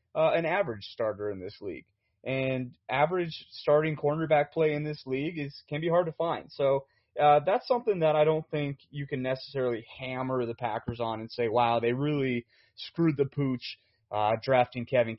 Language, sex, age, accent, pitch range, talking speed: English, male, 30-49, American, 125-150 Hz, 185 wpm